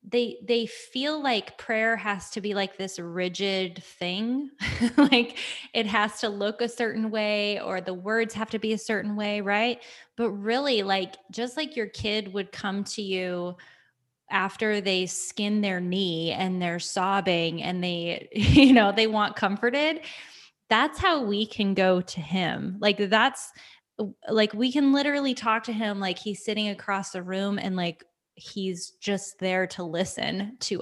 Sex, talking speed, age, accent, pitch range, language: female, 165 wpm, 20-39, American, 185-230 Hz, English